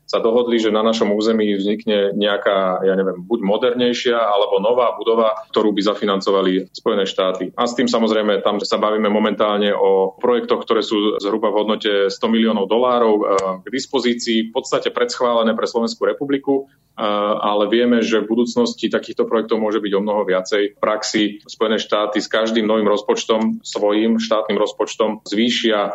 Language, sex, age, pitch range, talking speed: Slovak, male, 30-49, 105-125 Hz, 160 wpm